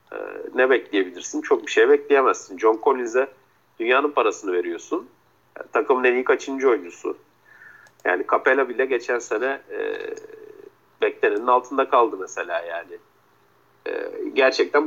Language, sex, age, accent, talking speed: Turkish, male, 50-69, native, 115 wpm